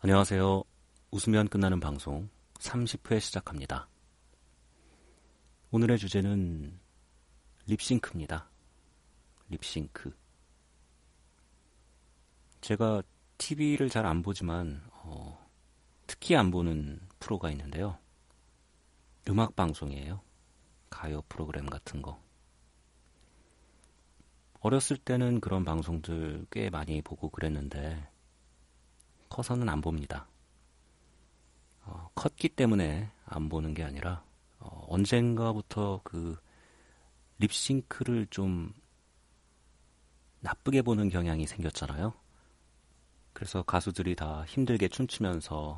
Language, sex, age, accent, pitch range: Korean, male, 40-59, native, 65-95 Hz